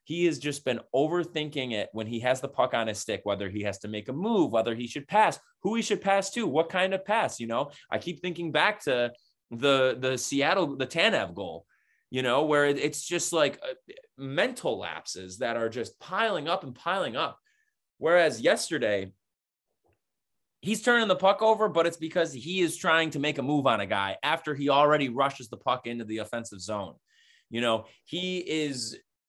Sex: male